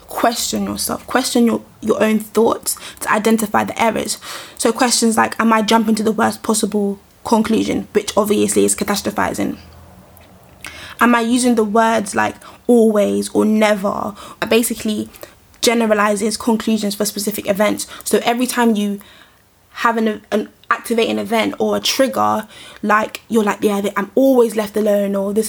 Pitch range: 210-235 Hz